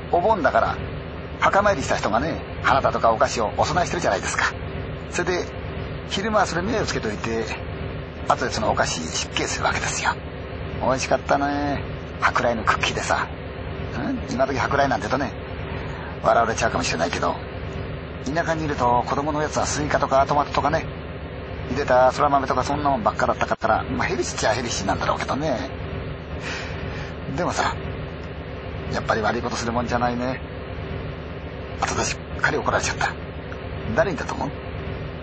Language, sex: Chinese, male